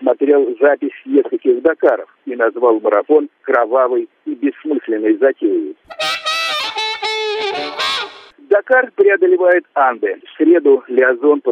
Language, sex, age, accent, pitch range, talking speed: Russian, male, 50-69, native, 285-405 Hz, 95 wpm